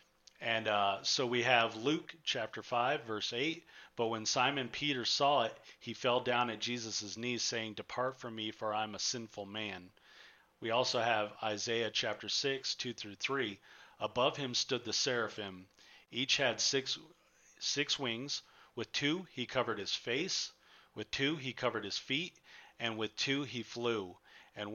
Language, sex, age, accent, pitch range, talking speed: English, male, 40-59, American, 110-135 Hz, 165 wpm